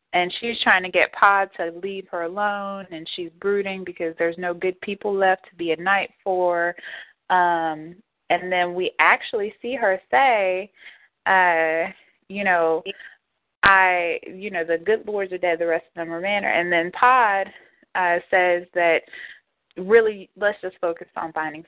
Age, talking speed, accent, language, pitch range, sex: 20-39, 170 wpm, American, English, 165-205 Hz, female